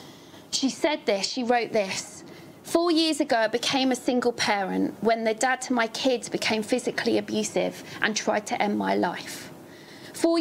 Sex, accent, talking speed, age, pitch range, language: female, British, 175 wpm, 40-59, 220-275 Hz, English